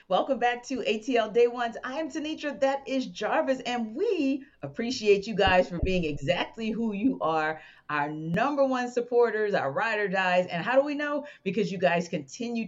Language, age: English, 40-59